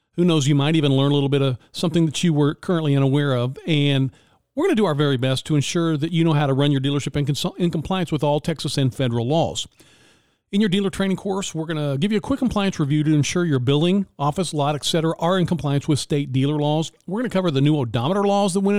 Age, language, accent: 50-69, English, American